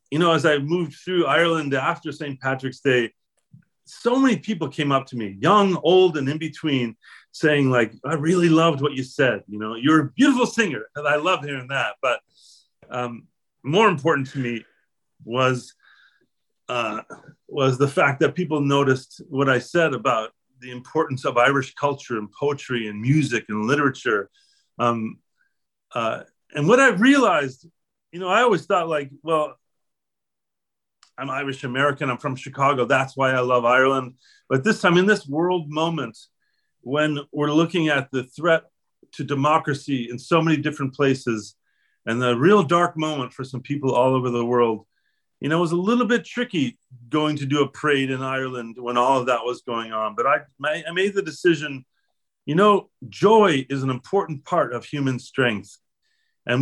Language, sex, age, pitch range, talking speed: English, male, 40-59, 130-170 Hz, 175 wpm